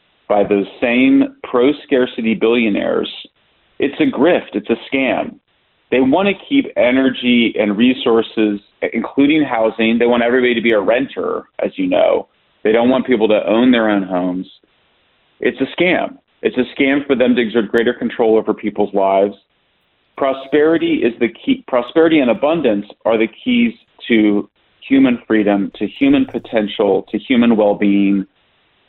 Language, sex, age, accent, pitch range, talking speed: English, male, 40-59, American, 110-140 Hz, 150 wpm